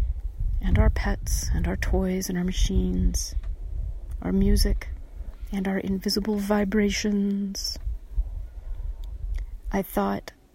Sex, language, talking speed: female, English, 95 wpm